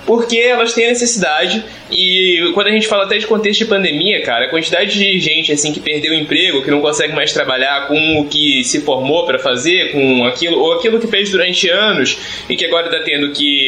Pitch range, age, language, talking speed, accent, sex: 165-235 Hz, 20-39, Portuguese, 220 wpm, Brazilian, male